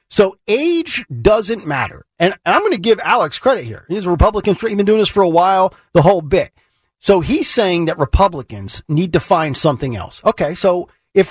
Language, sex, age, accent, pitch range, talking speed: English, male, 40-59, American, 140-195 Hz, 200 wpm